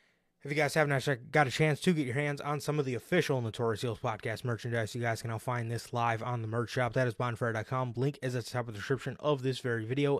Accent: American